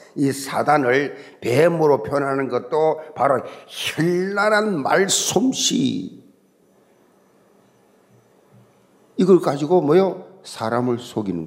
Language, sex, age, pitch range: Korean, male, 50-69, 150-210 Hz